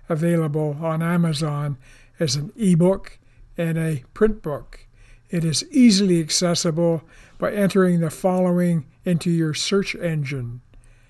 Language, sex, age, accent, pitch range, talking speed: English, male, 60-79, American, 125-180 Hz, 120 wpm